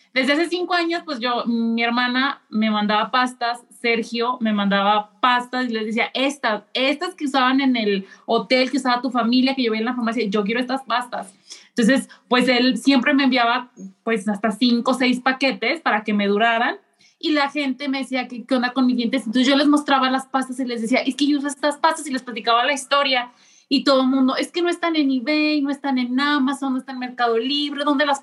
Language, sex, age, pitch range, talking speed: Spanish, female, 30-49, 225-275 Hz, 225 wpm